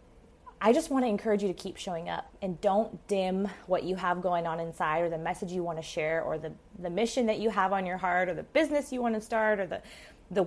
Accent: American